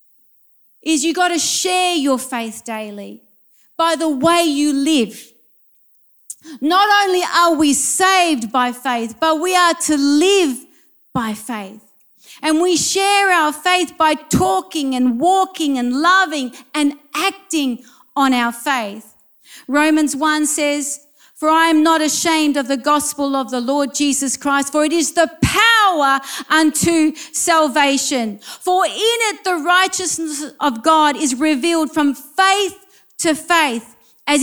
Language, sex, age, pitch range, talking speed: English, female, 40-59, 270-335 Hz, 140 wpm